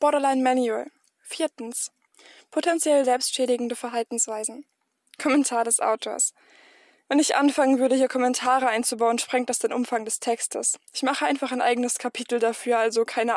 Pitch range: 240-275 Hz